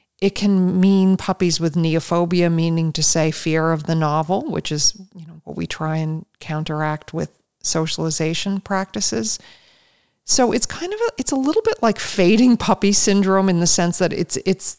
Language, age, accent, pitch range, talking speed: English, 40-59, American, 160-190 Hz, 180 wpm